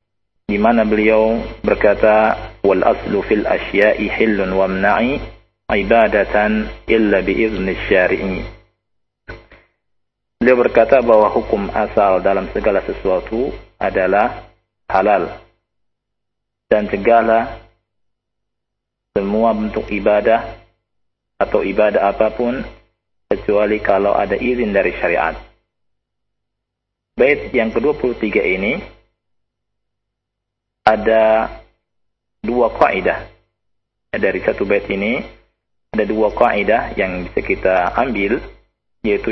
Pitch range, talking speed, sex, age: 100-115 Hz, 90 wpm, male, 50-69